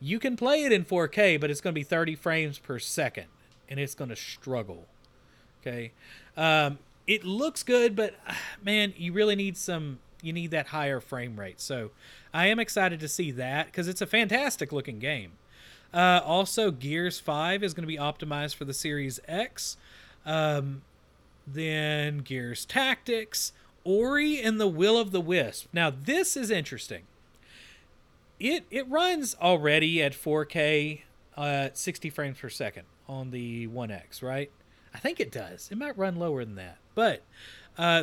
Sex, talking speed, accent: male, 165 wpm, American